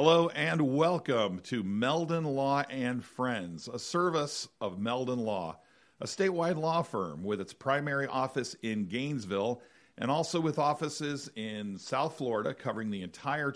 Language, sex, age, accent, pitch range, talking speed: English, male, 50-69, American, 110-135 Hz, 145 wpm